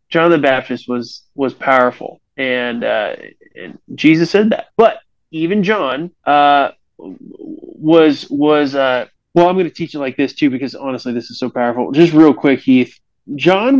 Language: English